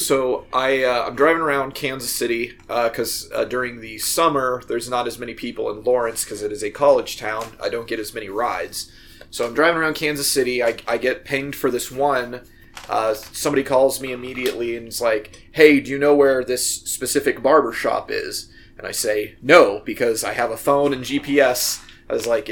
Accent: American